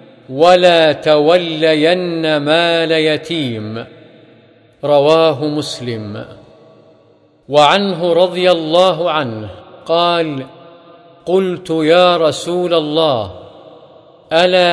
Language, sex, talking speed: Arabic, male, 65 wpm